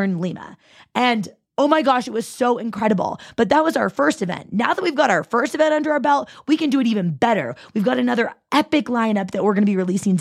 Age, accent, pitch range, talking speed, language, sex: 20-39, American, 200-250 Hz, 245 wpm, English, female